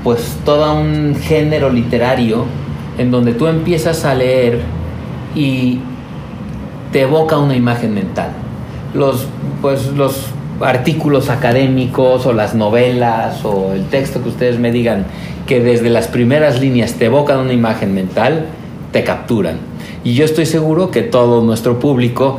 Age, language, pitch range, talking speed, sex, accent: 50-69, Spanish, 115-145 Hz, 140 wpm, male, Mexican